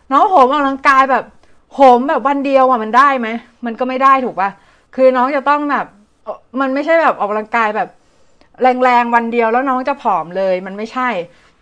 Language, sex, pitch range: Thai, female, 210-265 Hz